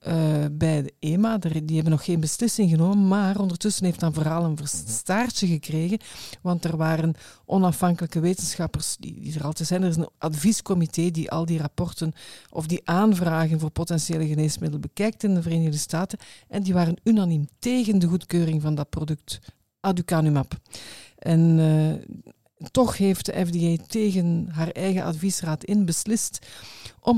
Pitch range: 160-185 Hz